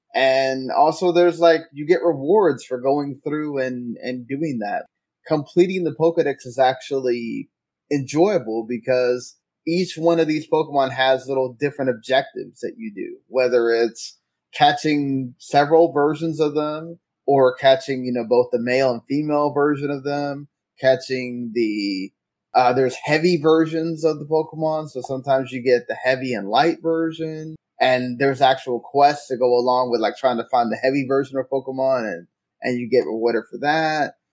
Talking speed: 165 wpm